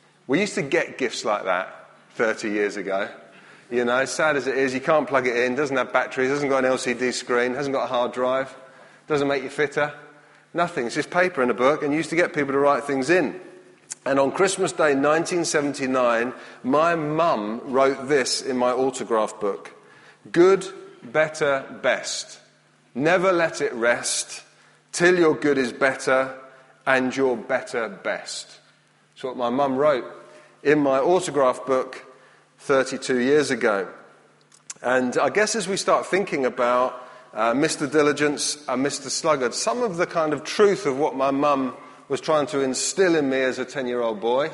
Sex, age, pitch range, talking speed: male, 30-49, 130-165 Hz, 175 wpm